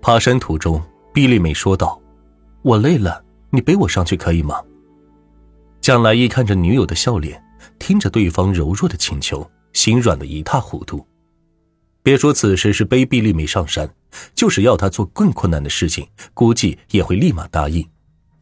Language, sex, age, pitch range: Chinese, male, 30-49, 85-120 Hz